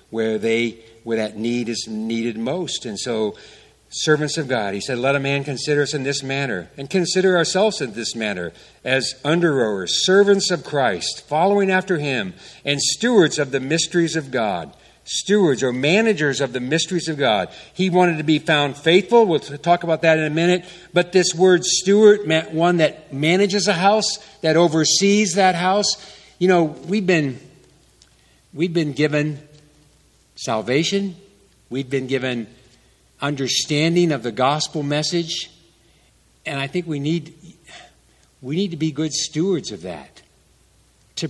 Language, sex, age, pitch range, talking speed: English, male, 50-69, 130-175 Hz, 160 wpm